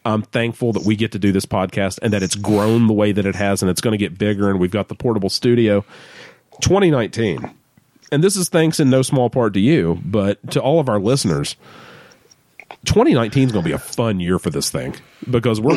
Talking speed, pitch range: 230 wpm, 100-135 Hz